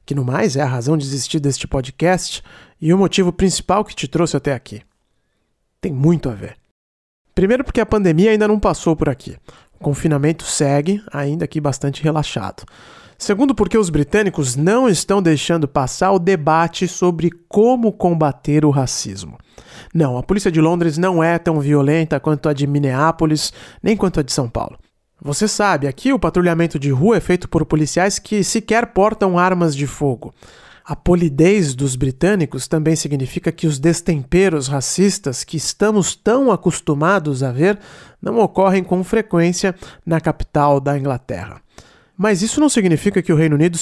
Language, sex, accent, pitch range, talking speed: English, male, Brazilian, 145-185 Hz, 165 wpm